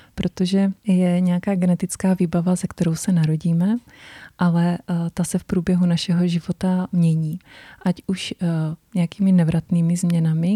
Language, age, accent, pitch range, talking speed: Czech, 30-49, native, 170-185 Hz, 125 wpm